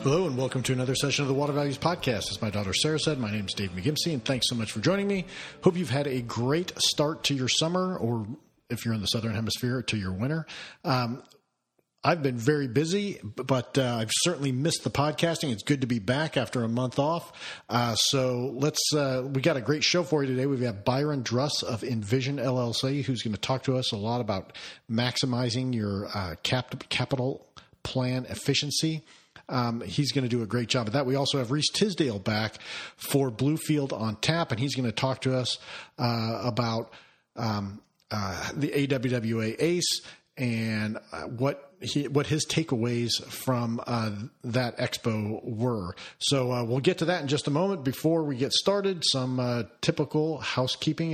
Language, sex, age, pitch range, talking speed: English, male, 40-59, 120-145 Hz, 195 wpm